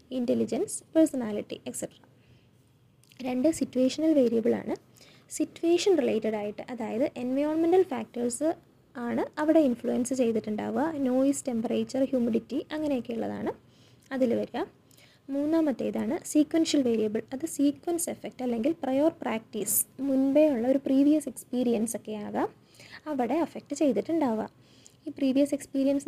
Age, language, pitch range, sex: 20-39, English, 240-295 Hz, female